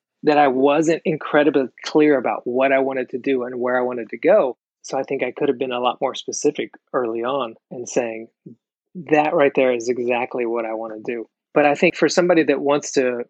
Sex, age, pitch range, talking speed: male, 30-49, 125-145 Hz, 225 wpm